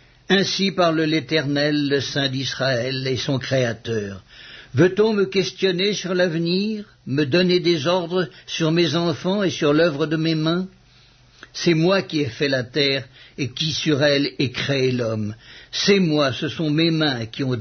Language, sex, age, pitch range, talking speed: English, male, 60-79, 130-165 Hz, 165 wpm